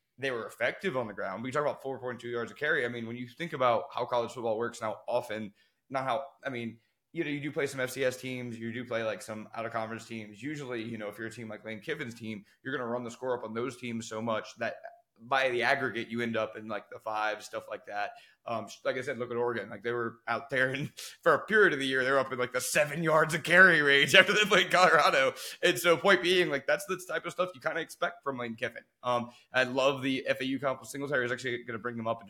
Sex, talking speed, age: male, 275 wpm, 20-39